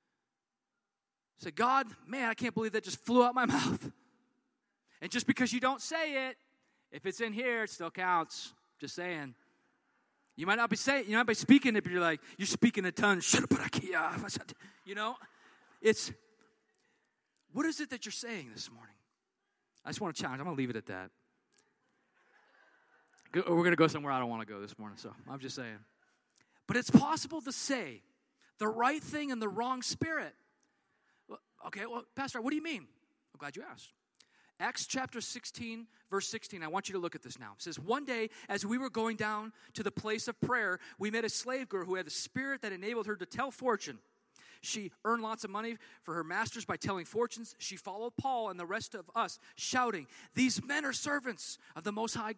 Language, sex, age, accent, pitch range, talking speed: English, male, 30-49, American, 195-260 Hz, 210 wpm